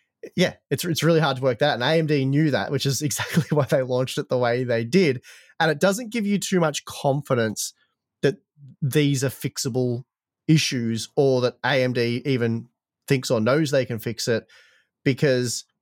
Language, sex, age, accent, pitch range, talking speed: English, male, 20-39, Australian, 110-140 Hz, 180 wpm